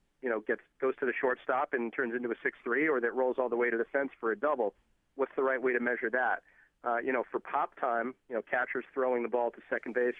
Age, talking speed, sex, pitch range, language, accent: 40-59, 270 wpm, male, 120-135 Hz, English, American